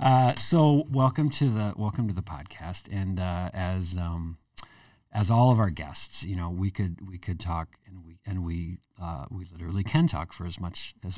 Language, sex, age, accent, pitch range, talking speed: English, male, 50-69, American, 90-110 Hz, 205 wpm